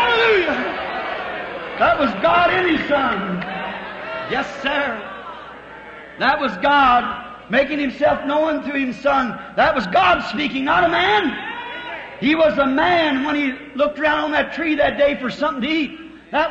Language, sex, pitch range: English, male, 285-320 Hz